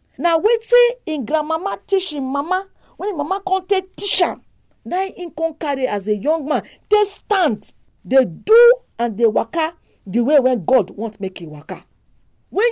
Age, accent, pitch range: 40-59, Nigerian, 225-370 Hz